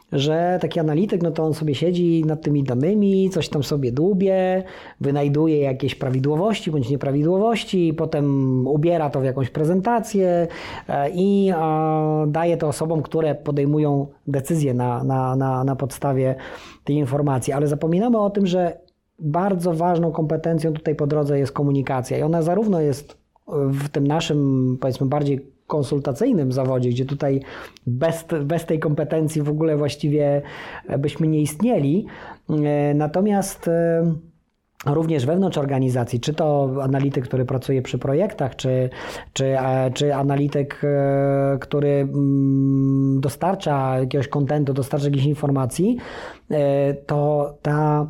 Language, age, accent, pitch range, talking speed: Polish, 20-39, native, 140-165 Hz, 120 wpm